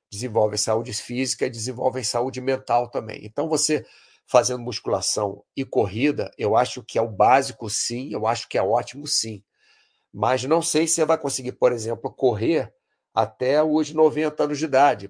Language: Portuguese